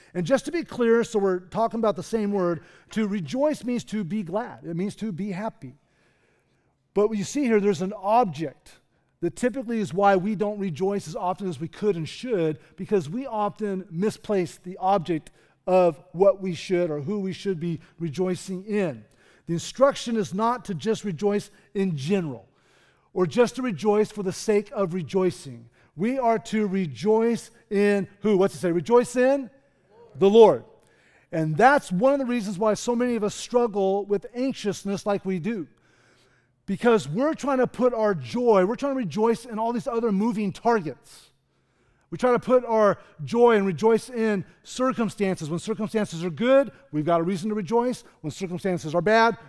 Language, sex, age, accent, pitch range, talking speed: English, male, 40-59, American, 175-225 Hz, 185 wpm